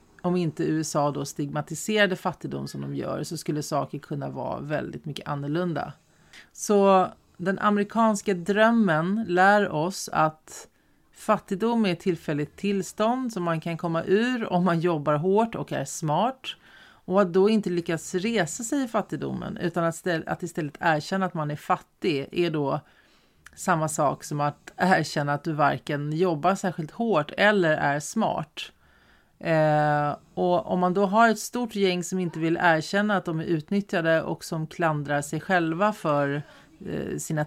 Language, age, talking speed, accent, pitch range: English, 30-49, 155 wpm, Swedish, 150-190 Hz